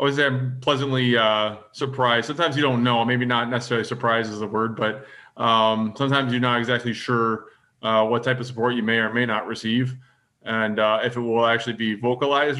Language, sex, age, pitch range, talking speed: English, male, 20-39, 115-130 Hz, 200 wpm